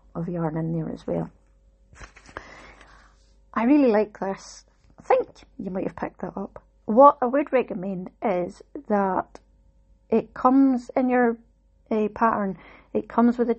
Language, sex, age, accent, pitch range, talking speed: English, female, 30-49, British, 180-220 Hz, 150 wpm